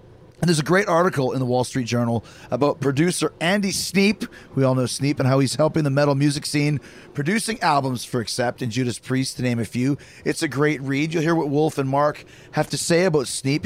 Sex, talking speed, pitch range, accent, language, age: male, 230 wpm, 130-165 Hz, American, English, 30-49